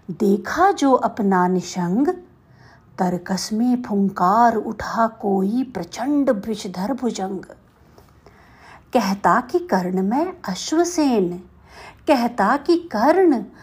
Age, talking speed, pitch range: 50-69, 85 wpm, 195-270 Hz